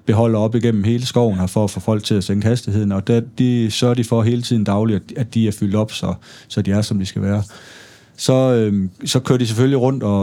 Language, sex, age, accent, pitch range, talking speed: Danish, male, 30-49, native, 100-120 Hz, 260 wpm